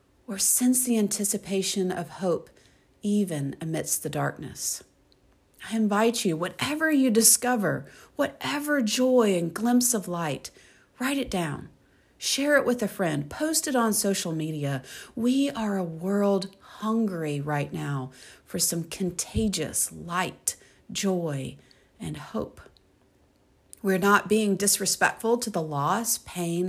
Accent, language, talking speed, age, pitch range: American, English, 130 wpm, 40-59, 170-220 Hz